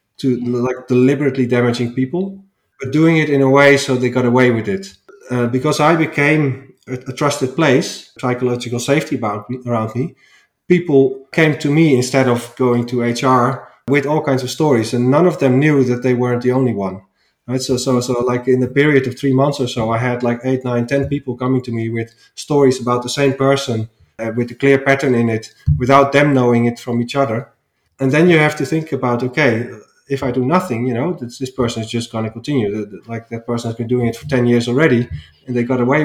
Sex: male